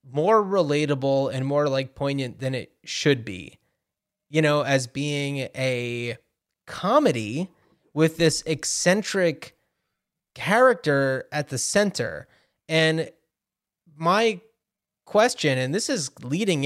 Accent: American